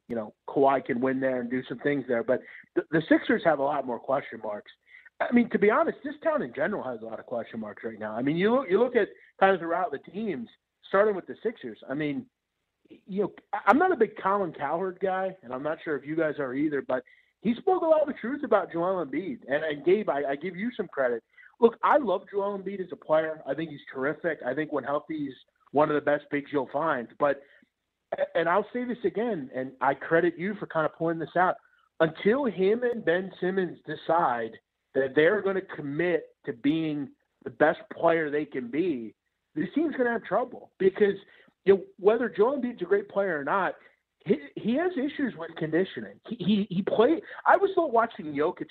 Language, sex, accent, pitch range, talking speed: English, male, American, 150-235 Hz, 230 wpm